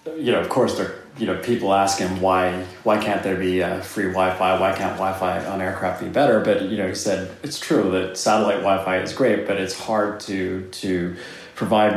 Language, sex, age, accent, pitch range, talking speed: English, male, 30-49, American, 95-120 Hz, 215 wpm